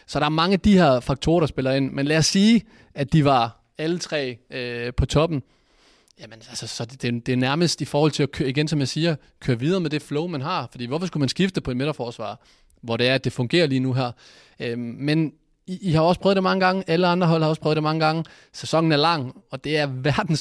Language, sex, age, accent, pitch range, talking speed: Danish, male, 20-39, native, 130-165 Hz, 260 wpm